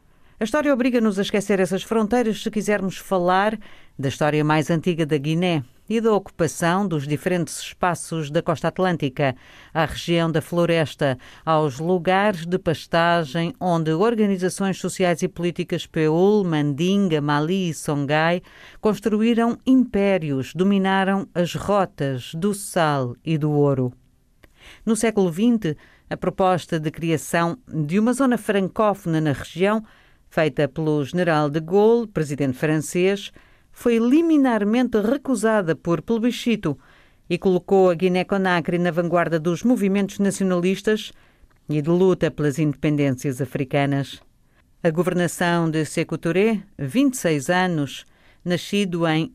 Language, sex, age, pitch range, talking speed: Portuguese, female, 50-69, 155-200 Hz, 125 wpm